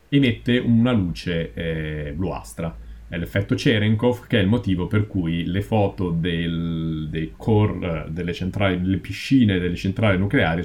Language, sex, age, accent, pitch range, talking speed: Italian, male, 30-49, native, 85-105 Hz, 145 wpm